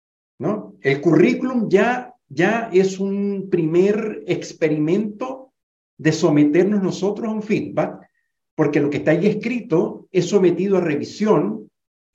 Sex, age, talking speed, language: male, 50-69, 120 wpm, Spanish